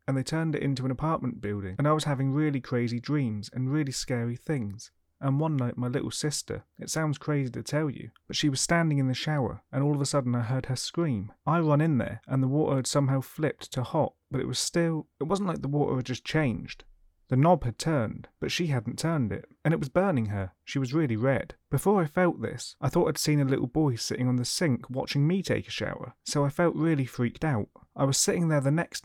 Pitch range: 125-155 Hz